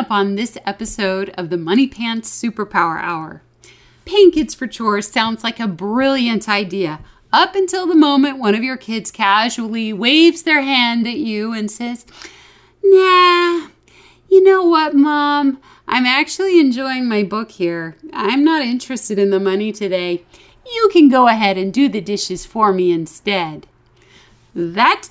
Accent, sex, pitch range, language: American, female, 185-270 Hz, English